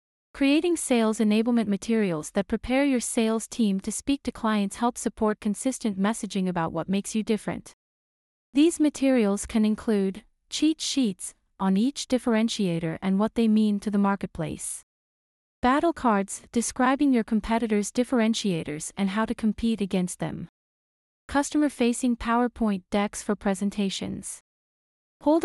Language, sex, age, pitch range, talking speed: English, female, 30-49, 200-245 Hz, 135 wpm